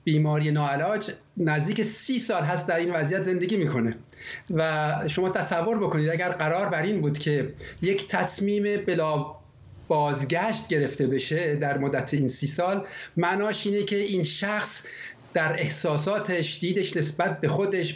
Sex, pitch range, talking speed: male, 155-200 Hz, 145 wpm